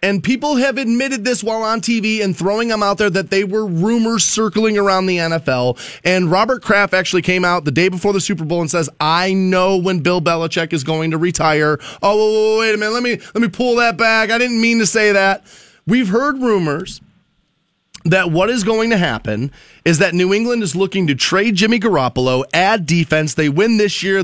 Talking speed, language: 210 wpm, English